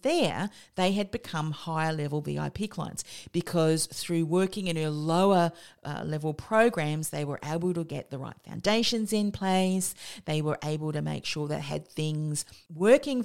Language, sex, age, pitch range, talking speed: English, female, 40-59, 150-190 Hz, 170 wpm